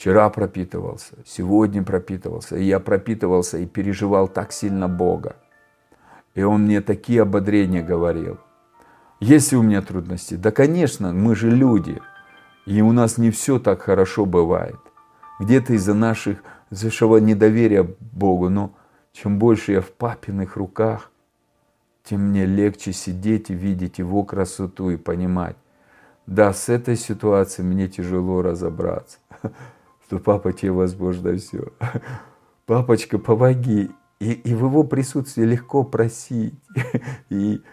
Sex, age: male, 50-69